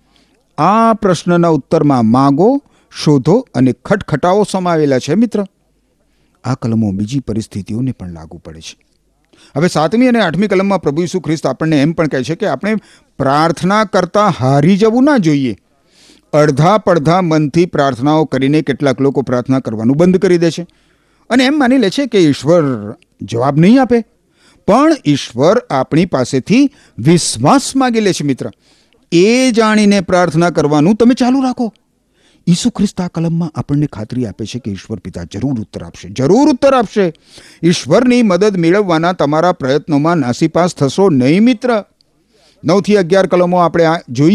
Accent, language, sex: native, Gujarati, male